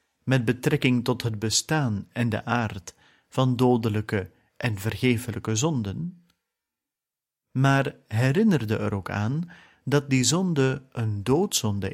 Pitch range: 110-140 Hz